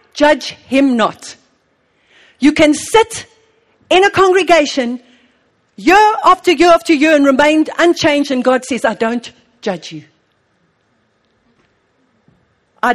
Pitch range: 240-335 Hz